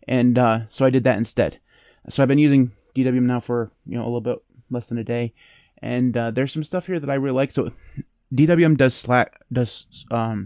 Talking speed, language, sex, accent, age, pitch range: 225 wpm, English, male, American, 30-49, 120-135 Hz